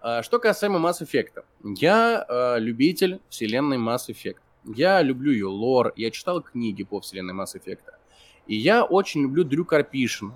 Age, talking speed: 20-39, 155 wpm